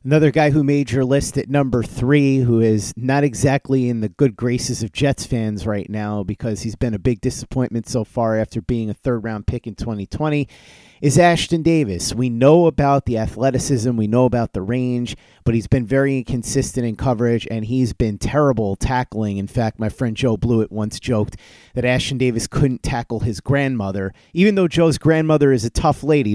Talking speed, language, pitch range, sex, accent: 195 wpm, English, 110-135 Hz, male, American